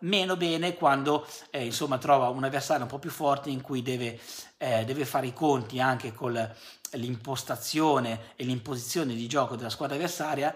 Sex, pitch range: male, 125-155 Hz